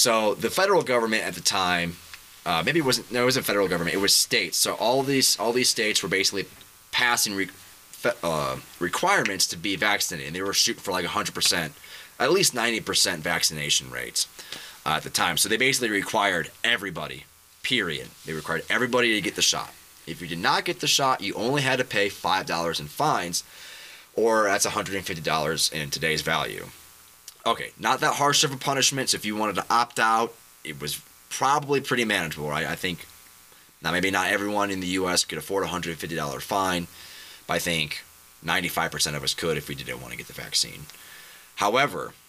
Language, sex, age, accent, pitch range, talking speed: English, male, 20-39, American, 75-120 Hz, 190 wpm